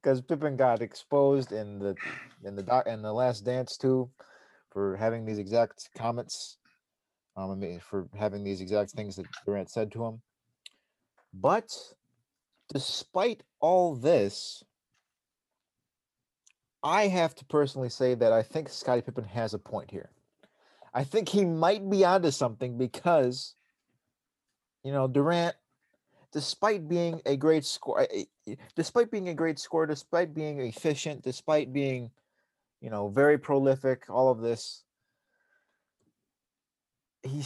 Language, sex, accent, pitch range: English, male, American, 110-145 Hz